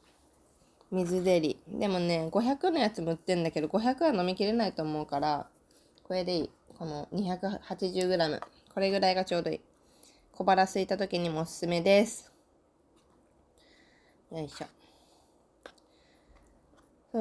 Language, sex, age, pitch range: Japanese, female, 20-39, 170-240 Hz